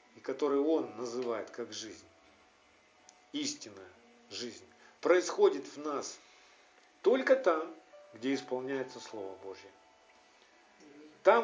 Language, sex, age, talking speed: Russian, male, 50-69, 95 wpm